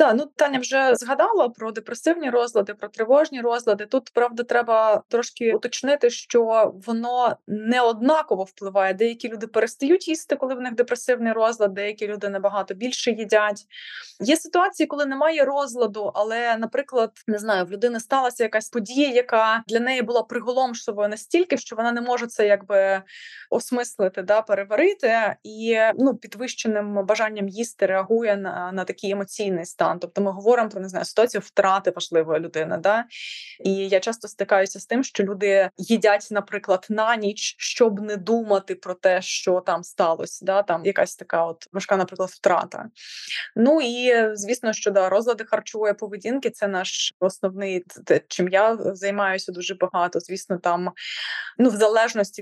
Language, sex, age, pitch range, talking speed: Ukrainian, female, 20-39, 195-240 Hz, 150 wpm